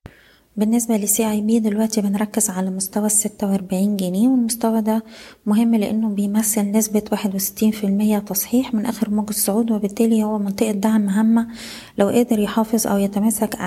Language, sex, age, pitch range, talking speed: Arabic, female, 20-39, 195-220 Hz, 155 wpm